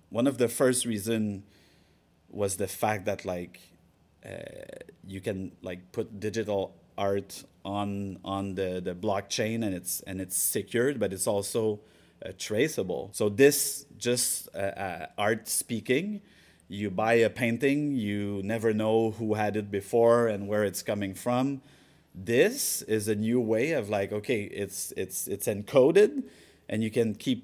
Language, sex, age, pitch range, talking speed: English, male, 30-49, 100-115 Hz, 155 wpm